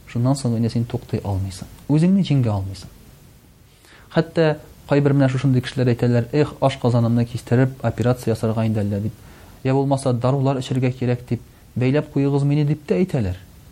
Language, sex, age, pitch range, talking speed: Russian, male, 40-59, 115-150 Hz, 175 wpm